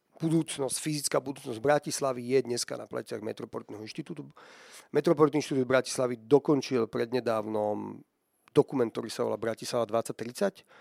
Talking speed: 115 wpm